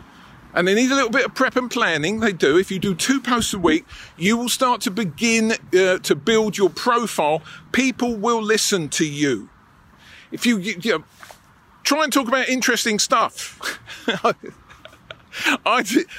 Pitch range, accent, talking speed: 175-245 Hz, British, 165 wpm